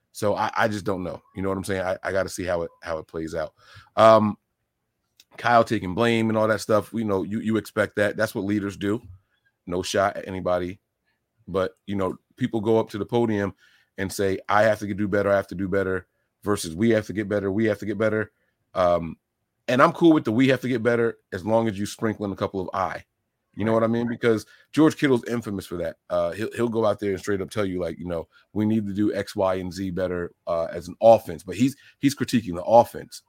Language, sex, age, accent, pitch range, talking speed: English, male, 30-49, American, 95-115 Hz, 255 wpm